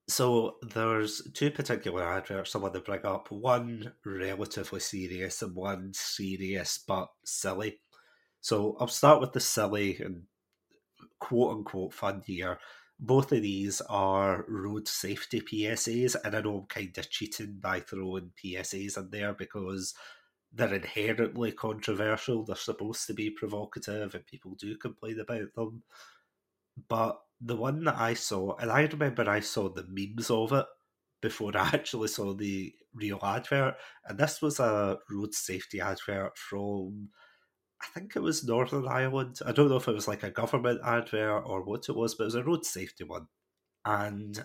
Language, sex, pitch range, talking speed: English, male, 100-115 Hz, 160 wpm